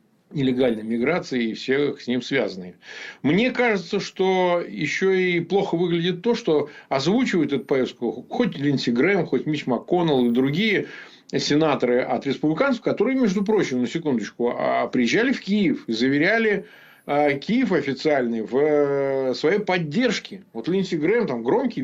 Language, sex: Russian, male